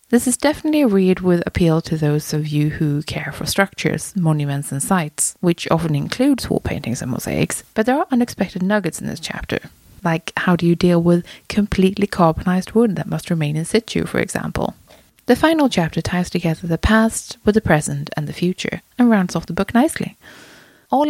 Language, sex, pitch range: English, female, 160-220 Hz